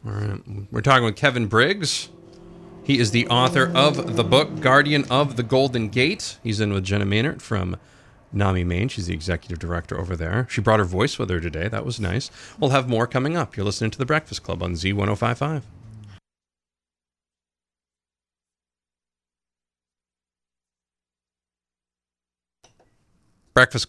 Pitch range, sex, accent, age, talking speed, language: 90-125 Hz, male, American, 40-59, 145 wpm, English